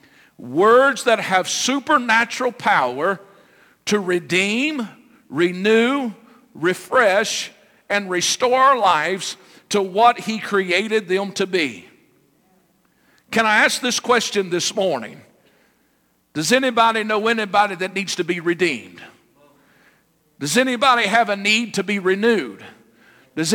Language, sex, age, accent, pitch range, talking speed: English, male, 50-69, American, 205-250 Hz, 115 wpm